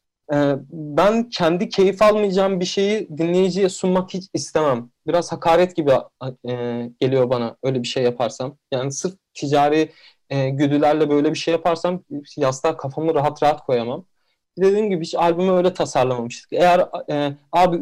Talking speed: 135 wpm